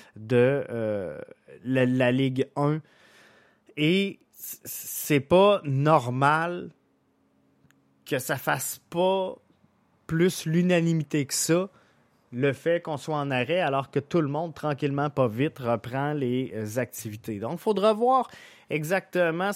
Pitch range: 135-180 Hz